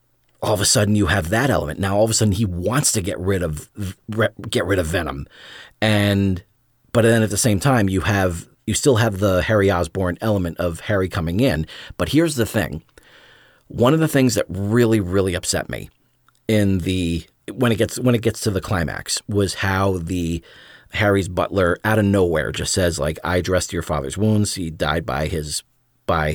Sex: male